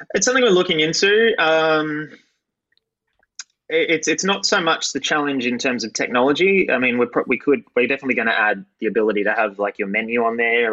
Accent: Australian